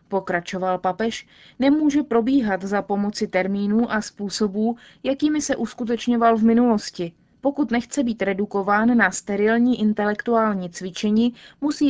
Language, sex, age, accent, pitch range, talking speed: Czech, female, 20-39, native, 190-230 Hz, 115 wpm